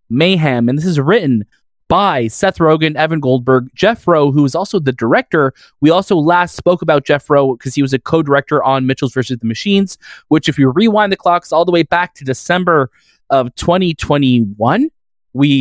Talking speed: 190 wpm